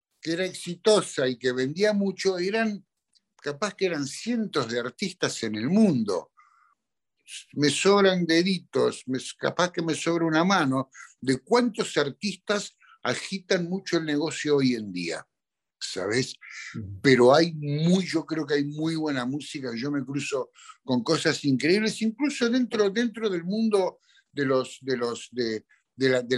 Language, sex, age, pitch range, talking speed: Spanish, male, 60-79, 135-190 Hz, 150 wpm